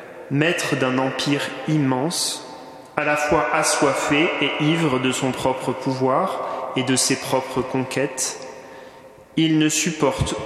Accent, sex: French, male